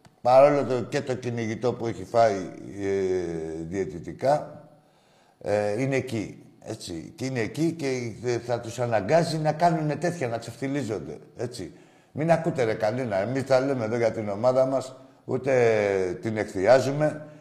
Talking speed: 140 wpm